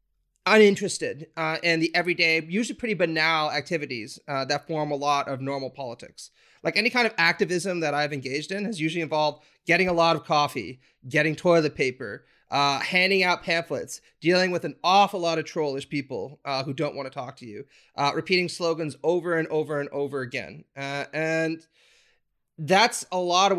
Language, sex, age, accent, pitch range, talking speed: English, male, 30-49, American, 140-175 Hz, 185 wpm